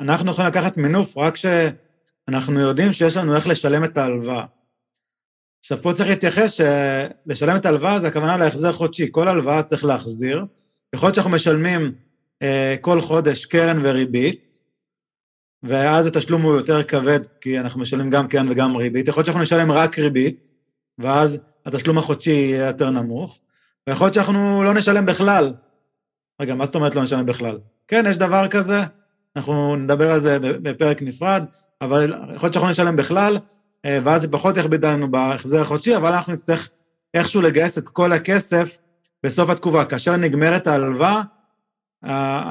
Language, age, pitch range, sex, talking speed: Hebrew, 30-49, 140-180 Hz, male, 155 wpm